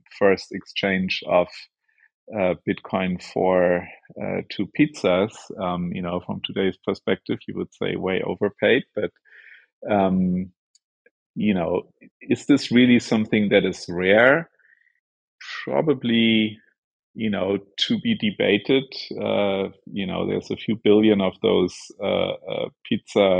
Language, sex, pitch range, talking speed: English, male, 90-110 Hz, 125 wpm